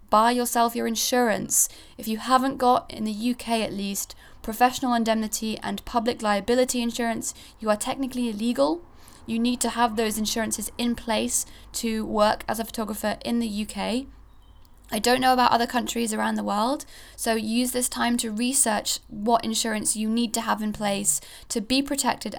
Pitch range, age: 205-245 Hz, 20-39